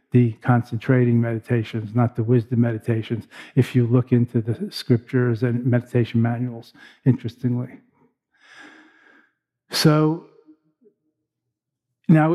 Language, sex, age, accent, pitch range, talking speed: English, male, 50-69, American, 120-135 Hz, 90 wpm